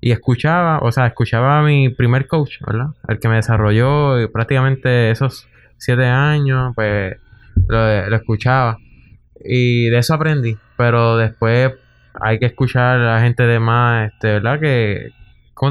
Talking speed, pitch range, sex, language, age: 155 wpm, 115-140 Hz, male, Spanish, 20-39